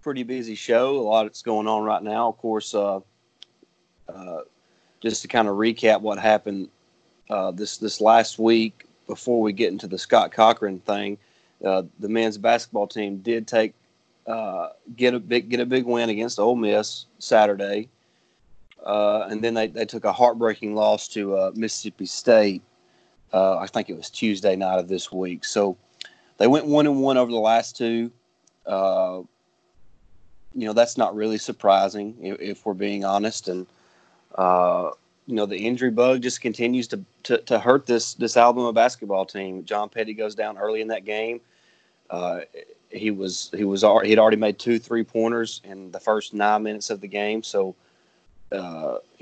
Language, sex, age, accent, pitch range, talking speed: English, male, 30-49, American, 100-115 Hz, 175 wpm